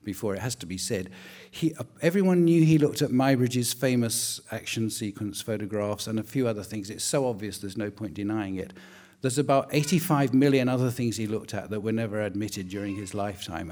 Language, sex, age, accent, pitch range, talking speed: English, male, 50-69, British, 105-140 Hz, 205 wpm